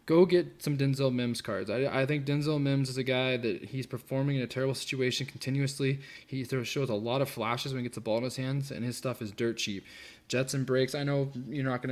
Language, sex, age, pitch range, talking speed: English, male, 20-39, 120-140 Hz, 255 wpm